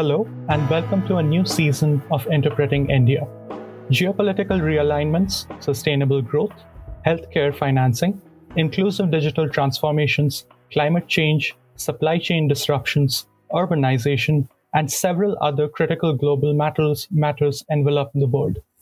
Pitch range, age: 140-165 Hz, 30-49